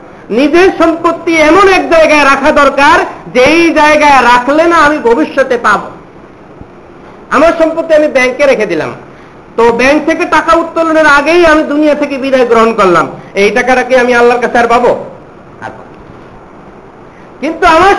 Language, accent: Bengali, native